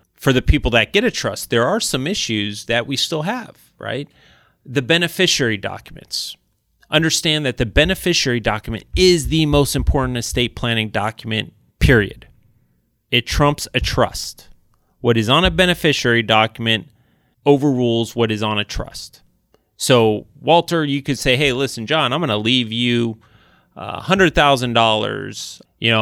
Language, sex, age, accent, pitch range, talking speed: English, male, 30-49, American, 110-140 Hz, 140 wpm